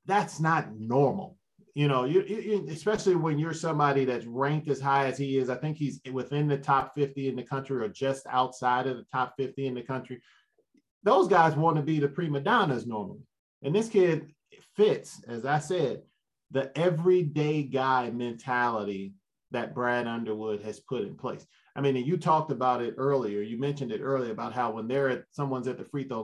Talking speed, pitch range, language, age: 190 wpm, 120-140 Hz, English, 30-49